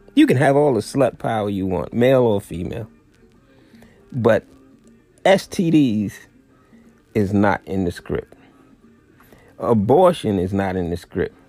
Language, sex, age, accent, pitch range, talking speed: English, male, 30-49, American, 100-145 Hz, 130 wpm